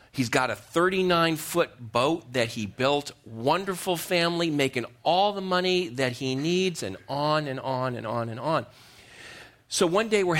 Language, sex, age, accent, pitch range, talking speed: English, male, 40-59, American, 110-145 Hz, 165 wpm